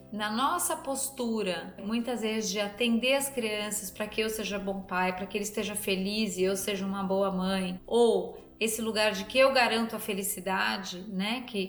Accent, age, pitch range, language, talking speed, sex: Brazilian, 30-49, 195-230 Hz, Portuguese, 190 wpm, female